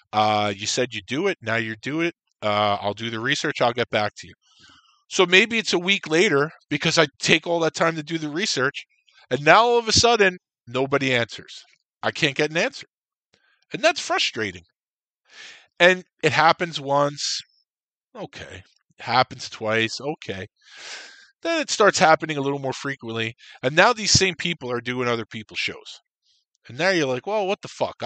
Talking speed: 185 wpm